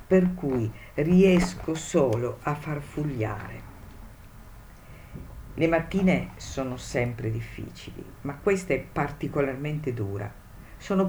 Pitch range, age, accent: 110-160 Hz, 50-69, native